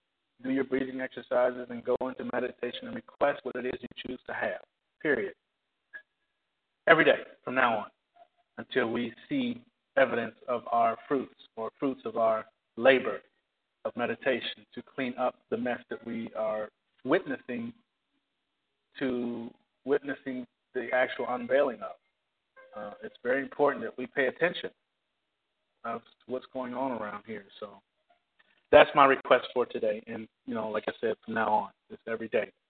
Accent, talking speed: American, 155 wpm